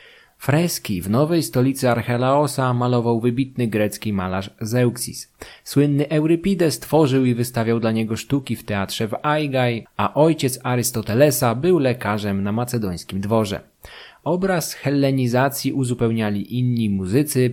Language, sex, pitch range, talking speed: Polish, male, 105-135 Hz, 120 wpm